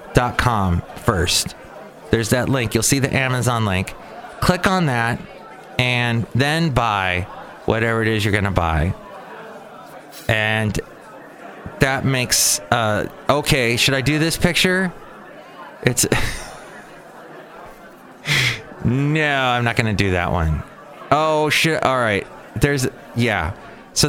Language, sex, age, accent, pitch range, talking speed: English, male, 30-49, American, 105-145 Hz, 125 wpm